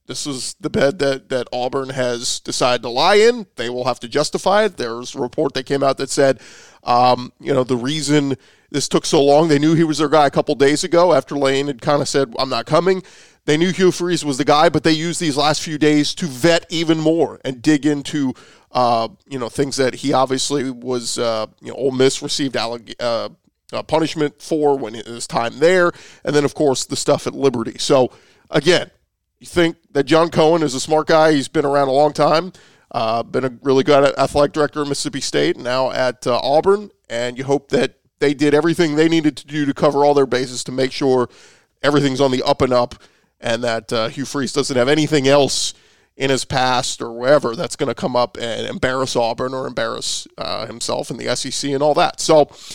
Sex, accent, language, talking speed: male, American, English, 220 wpm